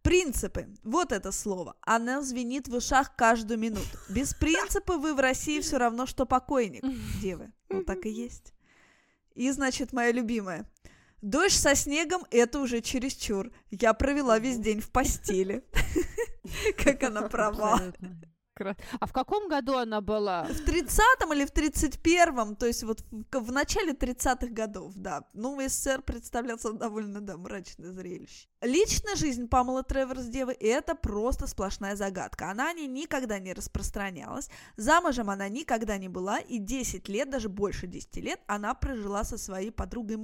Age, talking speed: 20-39, 155 wpm